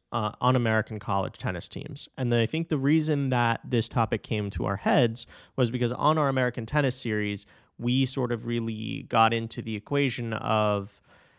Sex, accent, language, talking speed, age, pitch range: male, American, English, 180 wpm, 30-49, 115-145 Hz